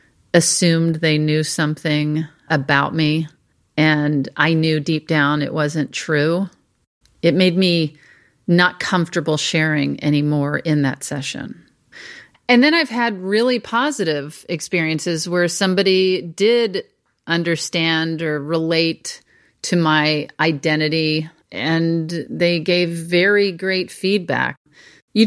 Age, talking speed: 40-59, 110 wpm